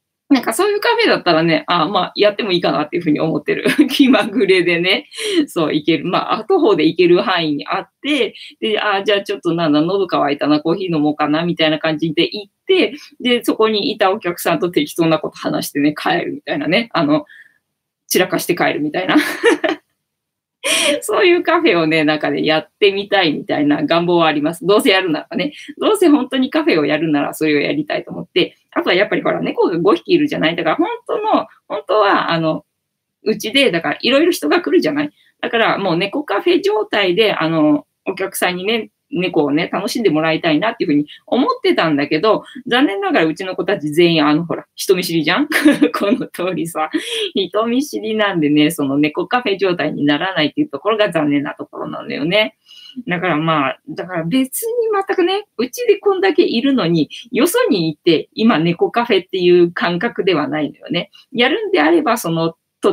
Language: Japanese